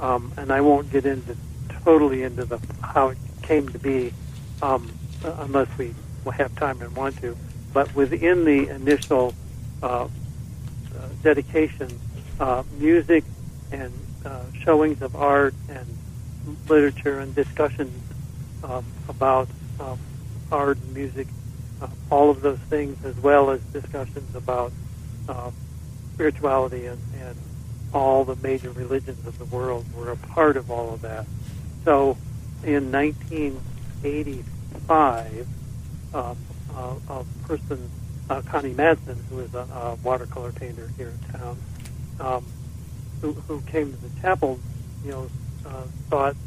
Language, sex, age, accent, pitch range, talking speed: English, male, 70-89, American, 125-140 Hz, 135 wpm